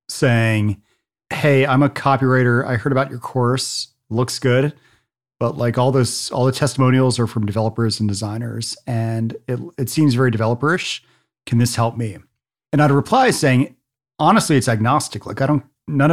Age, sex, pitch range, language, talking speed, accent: 40-59, male, 110-130 Hz, English, 165 wpm, American